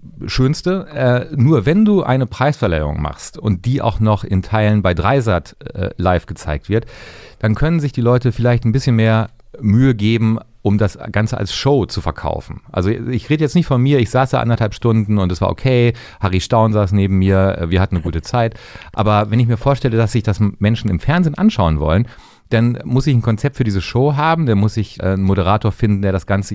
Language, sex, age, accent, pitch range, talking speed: German, male, 40-59, German, 100-125 Hz, 210 wpm